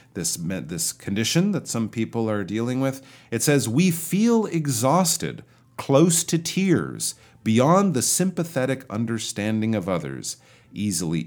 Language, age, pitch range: Chinese, 40-59, 95-145 Hz